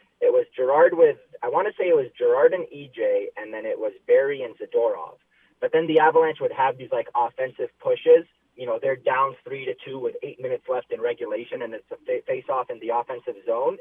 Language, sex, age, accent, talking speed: English, male, 30-49, American, 225 wpm